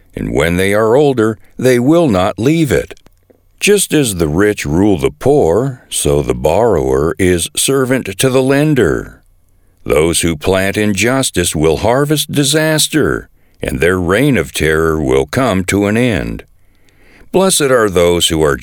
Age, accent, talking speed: 60-79, American, 150 wpm